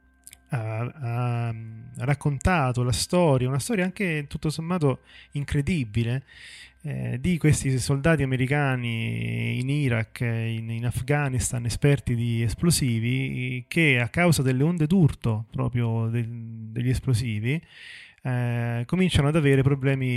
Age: 30-49